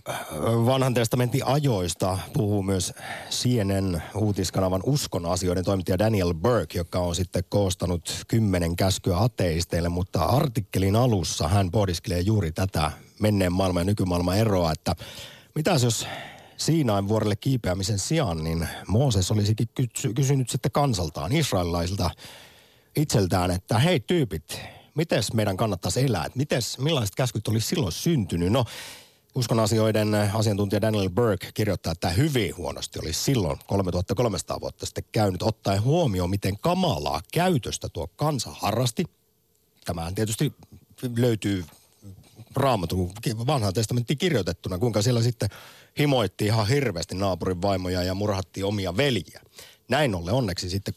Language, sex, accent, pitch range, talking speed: Finnish, male, native, 90-125 Hz, 125 wpm